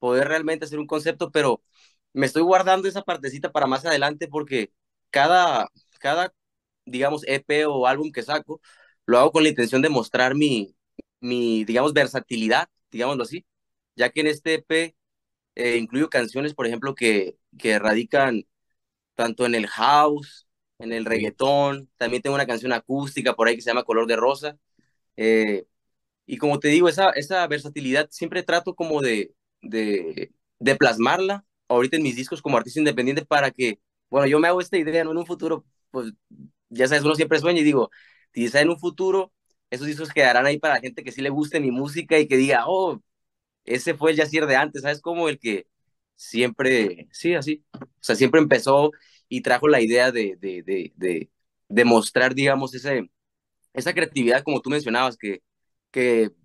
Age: 20-39